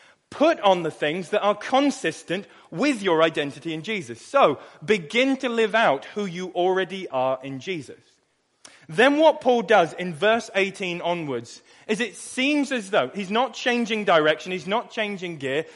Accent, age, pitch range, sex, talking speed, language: British, 30-49, 170-230 Hz, male, 170 wpm, English